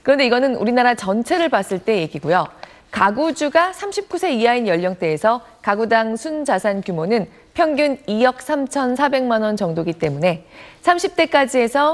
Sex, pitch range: female, 180-280 Hz